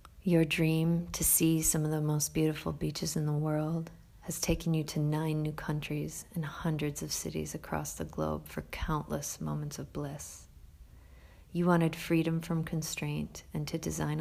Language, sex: English, female